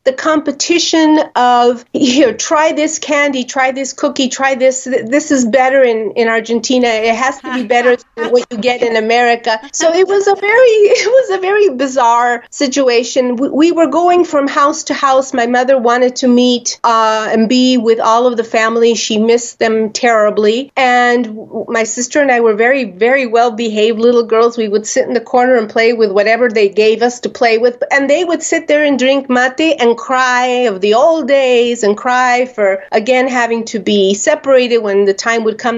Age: 40-59